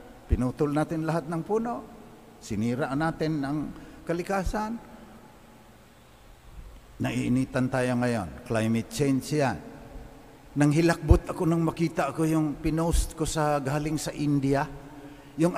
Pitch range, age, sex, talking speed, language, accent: 115-160 Hz, 50-69, male, 110 wpm, English, Filipino